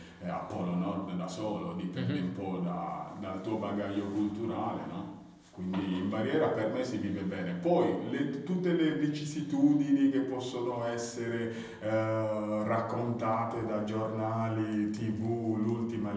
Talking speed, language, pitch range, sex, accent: 135 wpm, Italian, 100-120 Hz, male, native